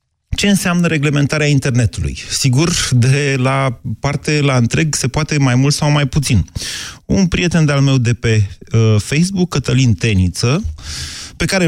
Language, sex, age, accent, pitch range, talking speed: Romanian, male, 30-49, native, 115-155 Hz, 150 wpm